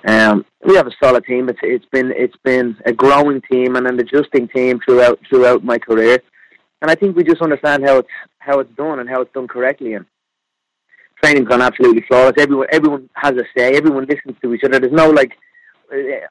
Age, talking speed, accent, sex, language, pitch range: 30-49, 210 wpm, British, male, English, 125-150 Hz